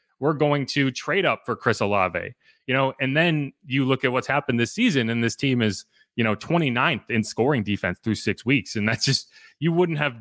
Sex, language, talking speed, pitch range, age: male, English, 225 wpm, 115-150 Hz, 20-39